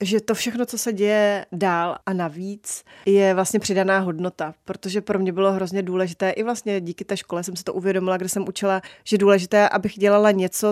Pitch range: 175-205 Hz